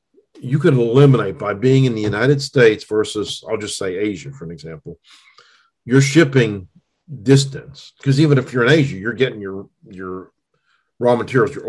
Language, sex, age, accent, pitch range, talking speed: English, male, 50-69, American, 105-140 Hz, 170 wpm